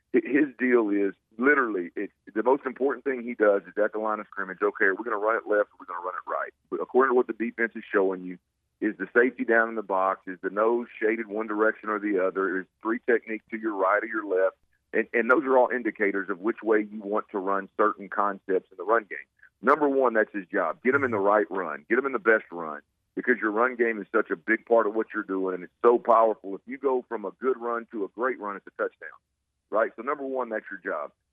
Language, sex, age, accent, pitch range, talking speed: English, male, 50-69, American, 100-130 Hz, 260 wpm